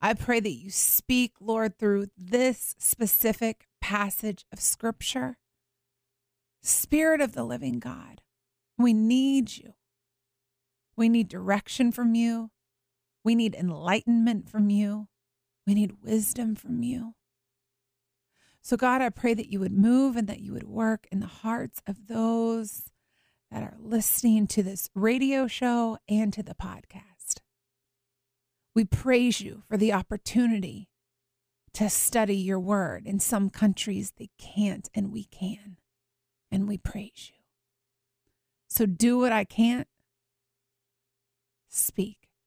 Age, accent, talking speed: 30-49, American, 130 wpm